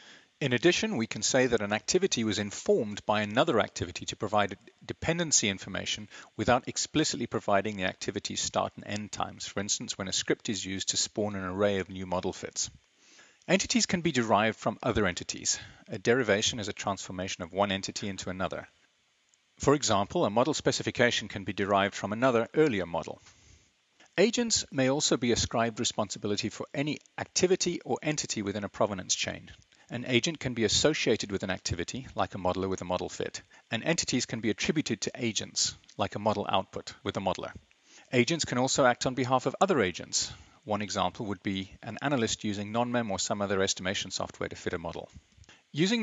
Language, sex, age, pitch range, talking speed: English, male, 40-59, 100-140 Hz, 185 wpm